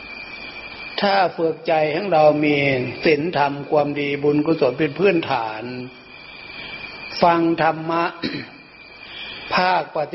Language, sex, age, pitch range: Thai, male, 60-79, 135-160 Hz